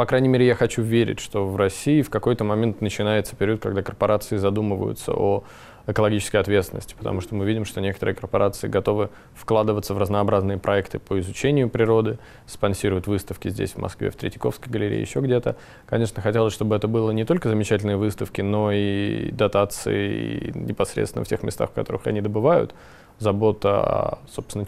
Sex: male